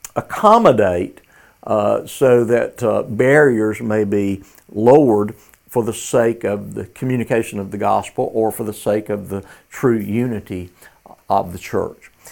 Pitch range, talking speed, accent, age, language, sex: 100-125 Hz, 140 wpm, American, 50-69, English, male